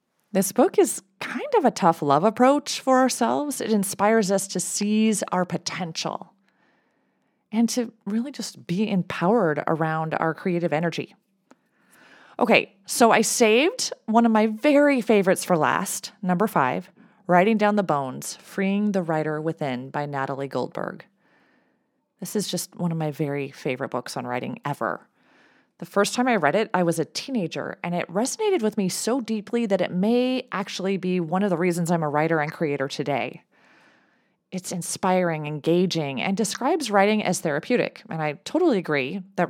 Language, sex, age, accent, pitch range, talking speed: English, female, 30-49, American, 165-225 Hz, 165 wpm